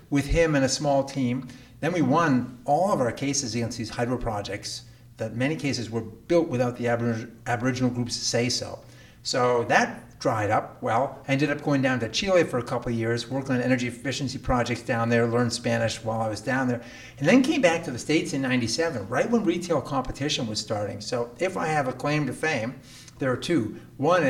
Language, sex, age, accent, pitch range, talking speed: English, male, 50-69, American, 115-140 Hz, 215 wpm